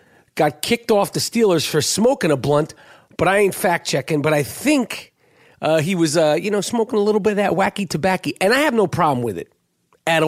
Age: 40-59